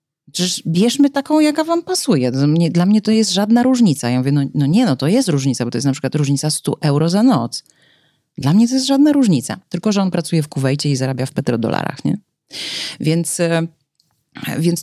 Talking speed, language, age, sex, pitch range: 200 wpm, Polish, 30-49, female, 130-160 Hz